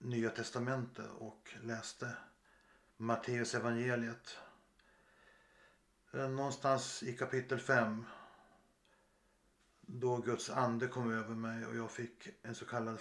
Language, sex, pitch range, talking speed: Swedish, male, 115-125 Hz, 100 wpm